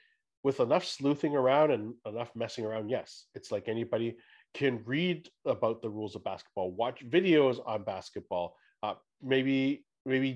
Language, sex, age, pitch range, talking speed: English, male, 40-59, 110-140 Hz, 150 wpm